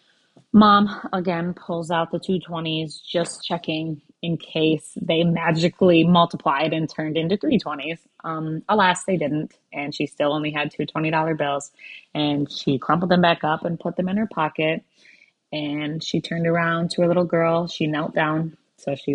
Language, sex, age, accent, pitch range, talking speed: English, female, 20-39, American, 160-200 Hz, 170 wpm